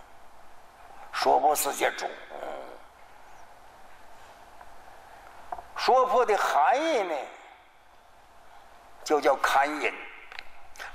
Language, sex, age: Chinese, male, 60-79